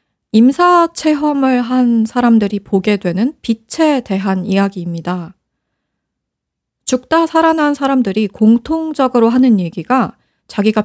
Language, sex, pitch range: Korean, female, 200-270 Hz